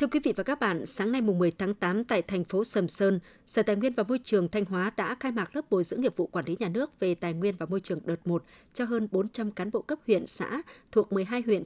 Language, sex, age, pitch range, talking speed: Vietnamese, female, 20-39, 180-225 Hz, 290 wpm